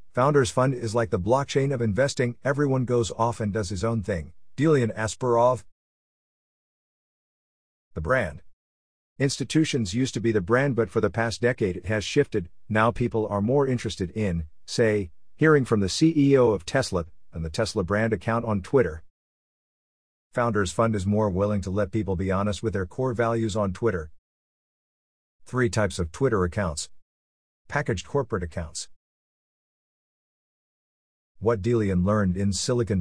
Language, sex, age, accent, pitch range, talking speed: English, male, 50-69, American, 90-120 Hz, 150 wpm